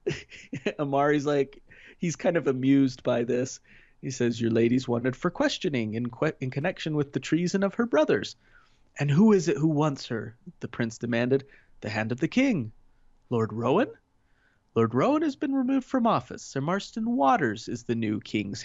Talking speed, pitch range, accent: 180 wpm, 115-145 Hz, American